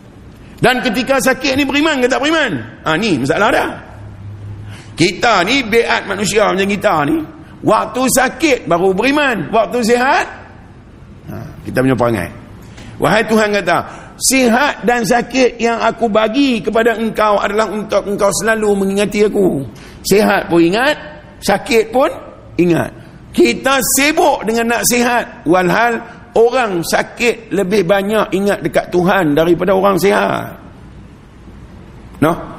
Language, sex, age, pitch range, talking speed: Malay, male, 50-69, 160-235 Hz, 125 wpm